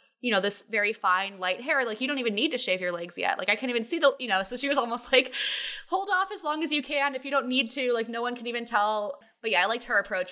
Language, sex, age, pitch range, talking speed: English, female, 10-29, 185-255 Hz, 315 wpm